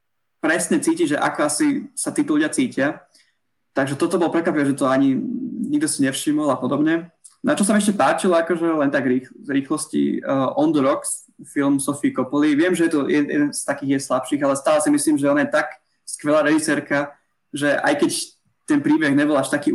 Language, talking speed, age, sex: Slovak, 205 wpm, 20-39, male